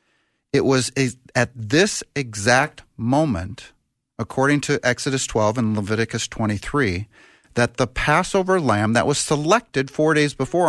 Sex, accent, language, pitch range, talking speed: male, American, English, 110-140 Hz, 130 wpm